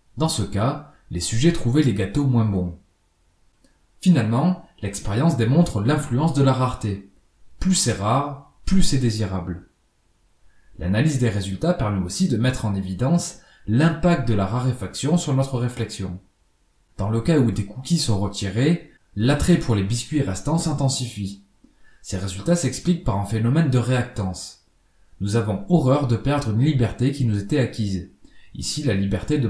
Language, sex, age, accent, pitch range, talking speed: French, male, 20-39, French, 100-145 Hz, 155 wpm